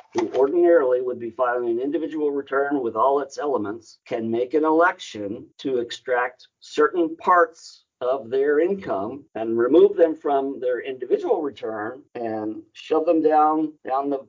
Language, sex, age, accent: English, male, 50-69, American